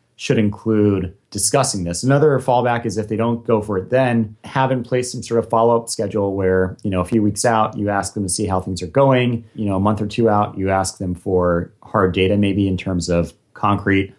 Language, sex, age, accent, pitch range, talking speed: English, male, 30-49, American, 95-115 Hz, 240 wpm